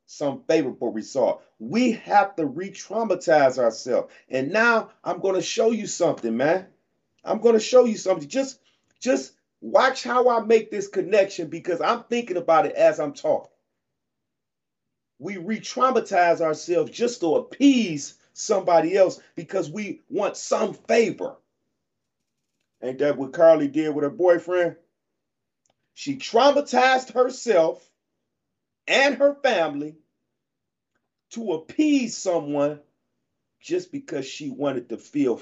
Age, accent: 40-59, American